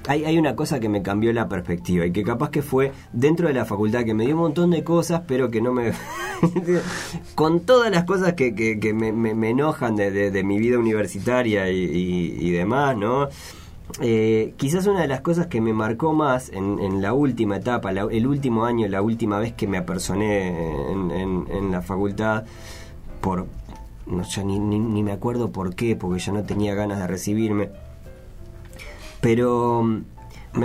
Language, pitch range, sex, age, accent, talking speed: Spanish, 100-130 Hz, male, 20-39, Argentinian, 195 wpm